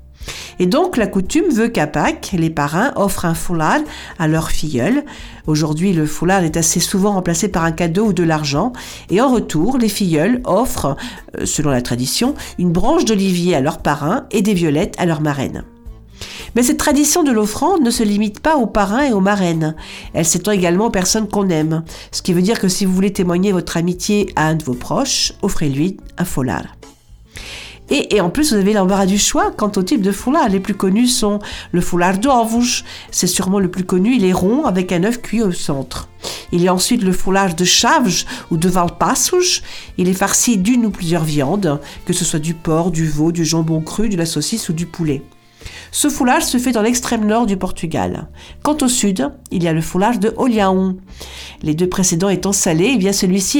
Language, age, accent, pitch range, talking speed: French, 50-69, French, 165-220 Hz, 205 wpm